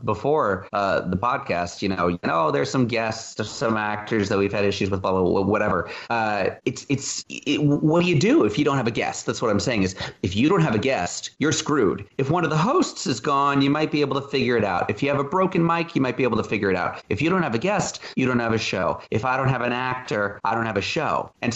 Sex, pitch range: male, 100-125 Hz